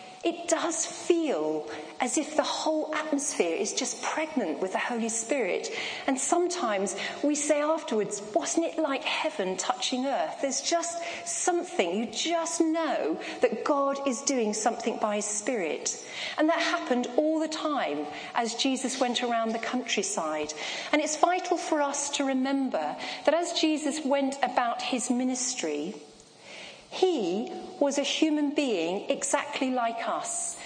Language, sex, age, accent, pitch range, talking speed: English, female, 40-59, British, 250-325 Hz, 145 wpm